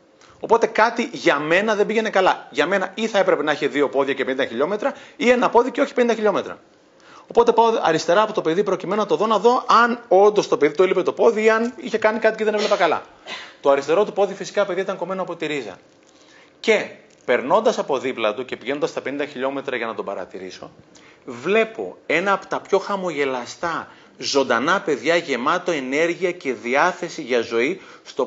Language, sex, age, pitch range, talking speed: Greek, male, 30-49, 130-195 Hz, 200 wpm